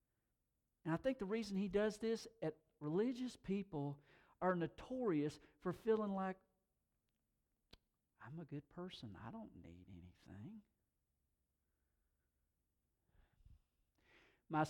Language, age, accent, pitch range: English, 50-69, American, 120-195 Hz